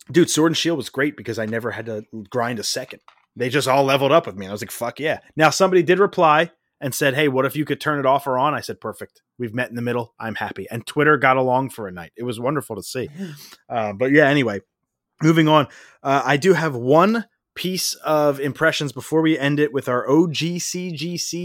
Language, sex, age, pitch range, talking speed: English, male, 20-39, 125-160 Hz, 240 wpm